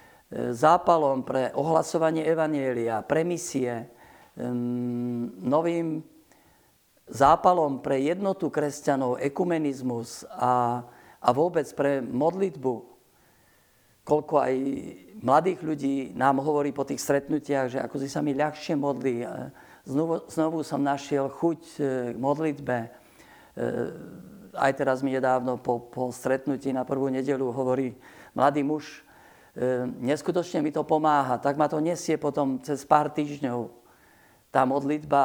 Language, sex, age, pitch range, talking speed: Slovak, male, 50-69, 125-150 Hz, 115 wpm